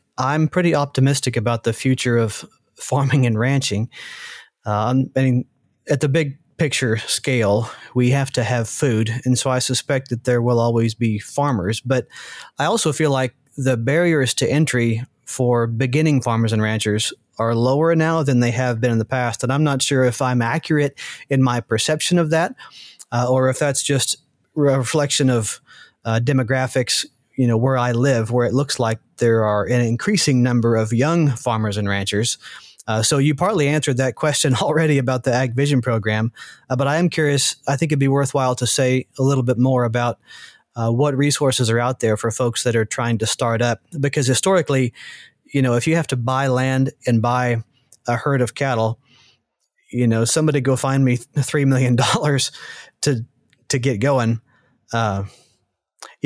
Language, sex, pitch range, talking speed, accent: English, male, 120-140 Hz, 180 wpm, American